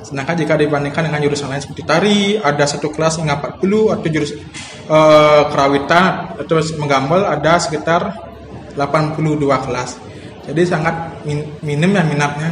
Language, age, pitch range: Indonesian, 20-39, 155-185 Hz